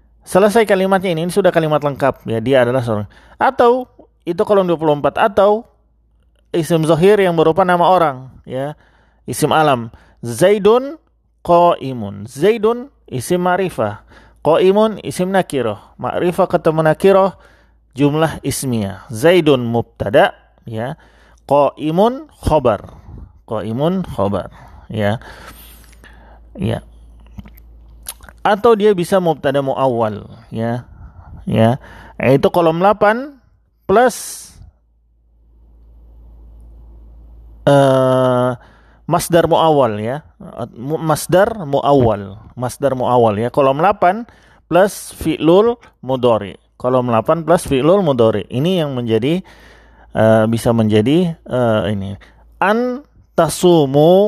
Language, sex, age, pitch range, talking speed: Indonesian, male, 30-49, 105-175 Hz, 100 wpm